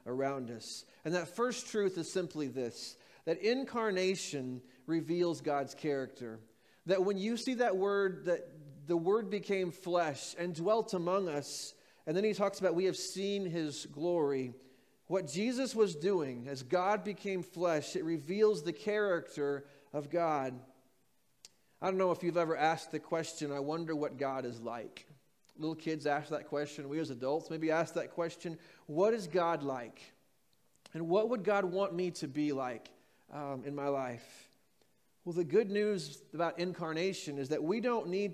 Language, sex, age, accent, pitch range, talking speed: English, male, 30-49, American, 145-190 Hz, 170 wpm